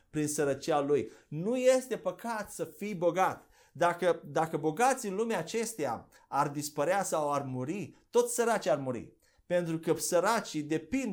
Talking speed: 150 wpm